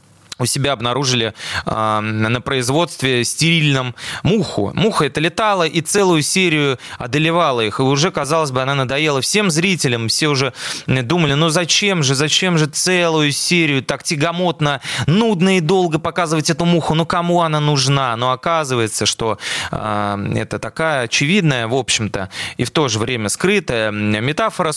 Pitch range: 115-155 Hz